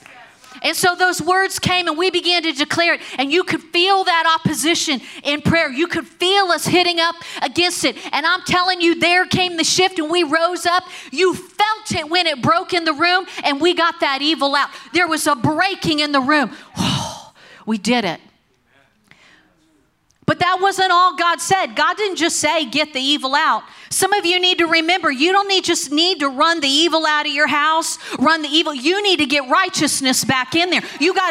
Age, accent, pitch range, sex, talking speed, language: 40-59, American, 315-375 Hz, female, 210 wpm, English